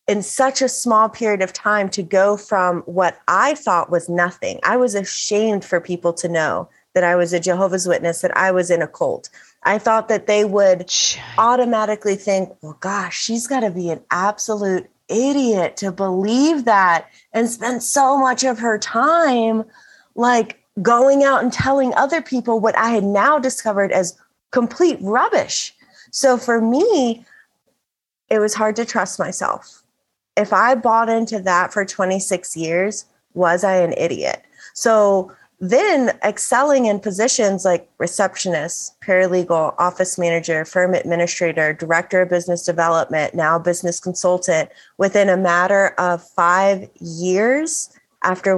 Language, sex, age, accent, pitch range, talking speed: English, female, 30-49, American, 180-230 Hz, 150 wpm